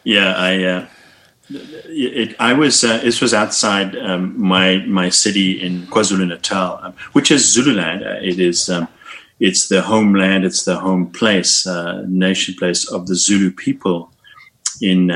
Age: 30-49